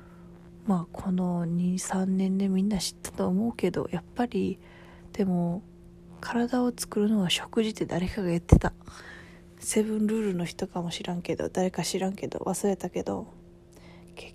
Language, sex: Japanese, female